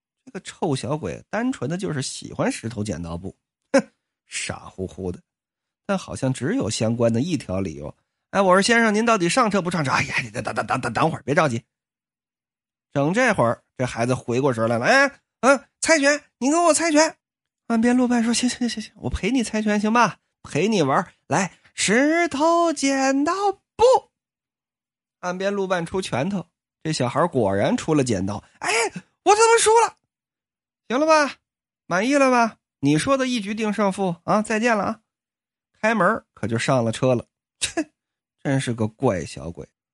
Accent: native